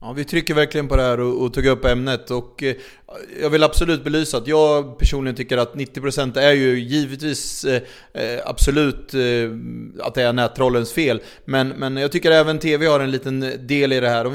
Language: Swedish